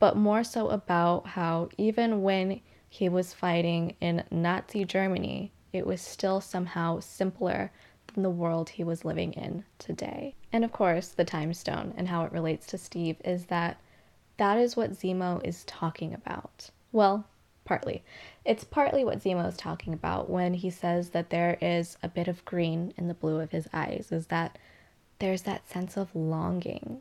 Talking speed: 175 wpm